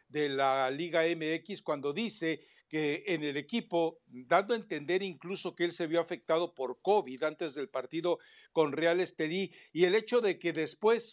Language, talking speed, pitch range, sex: Spanish, 180 wpm, 160-205 Hz, male